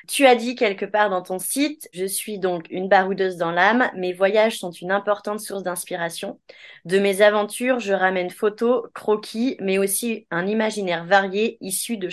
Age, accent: 20-39, French